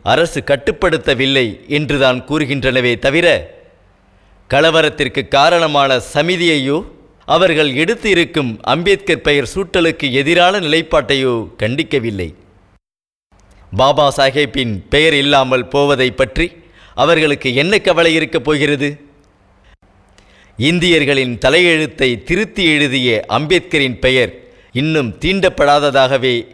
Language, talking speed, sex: Tamil, 80 wpm, male